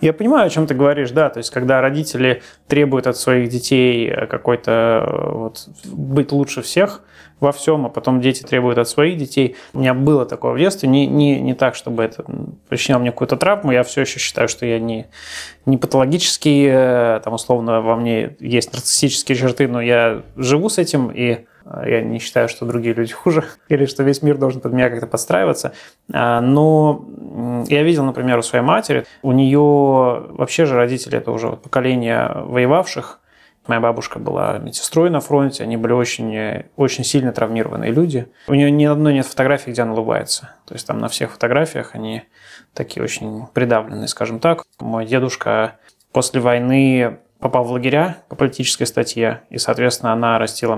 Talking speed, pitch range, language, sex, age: 170 wpm, 115-140 Hz, Russian, male, 20-39